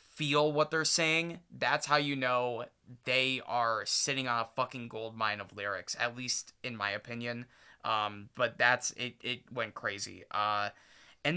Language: English